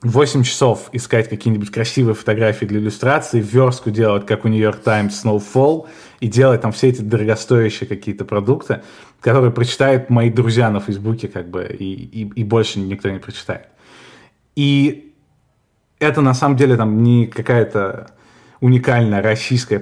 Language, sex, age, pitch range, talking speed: Russian, male, 20-39, 105-125 Hz, 145 wpm